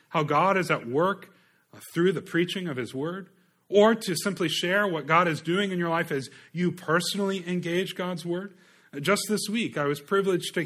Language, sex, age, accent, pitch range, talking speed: English, male, 30-49, American, 140-190 Hz, 195 wpm